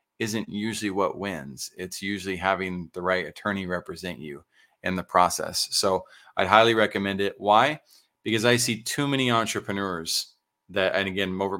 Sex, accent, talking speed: male, American, 160 wpm